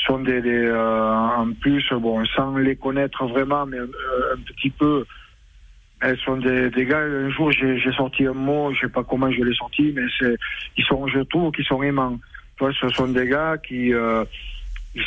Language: French